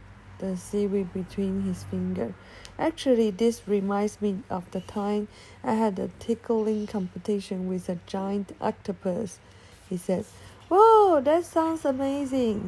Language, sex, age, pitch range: Chinese, female, 50-69, 185-250 Hz